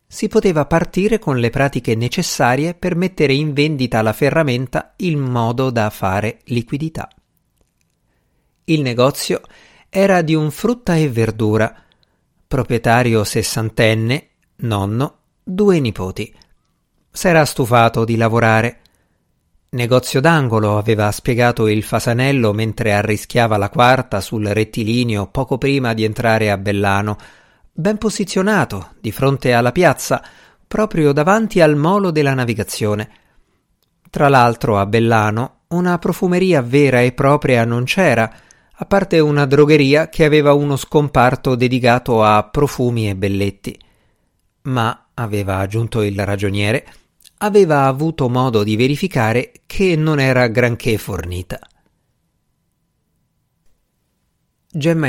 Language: Italian